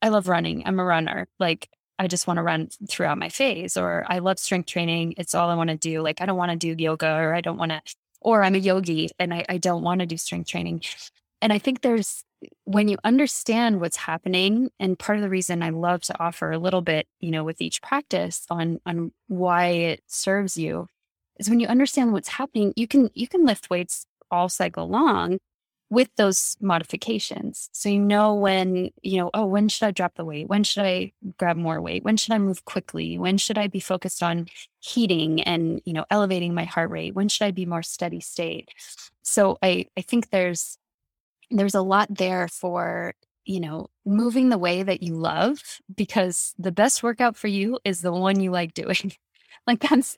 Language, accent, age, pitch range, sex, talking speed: English, American, 20-39, 170-210 Hz, female, 215 wpm